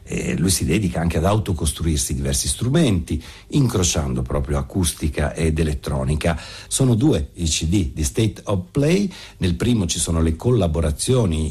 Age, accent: 60-79, native